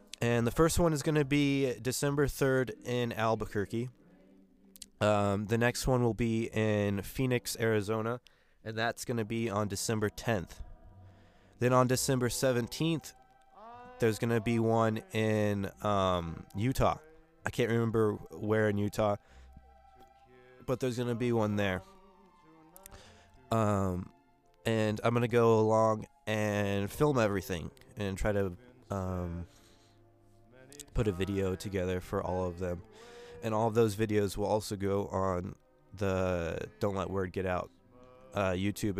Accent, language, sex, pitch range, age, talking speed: American, English, male, 95-125 Hz, 20-39, 145 wpm